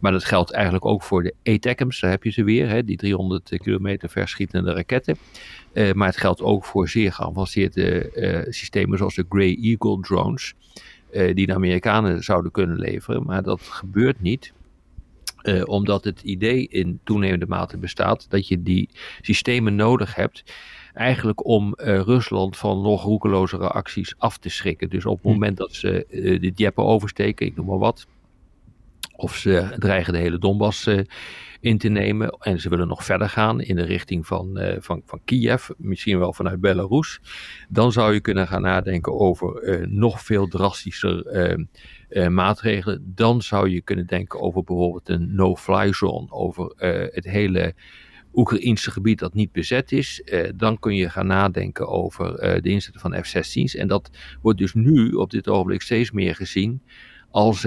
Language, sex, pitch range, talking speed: Dutch, male, 95-110 Hz, 175 wpm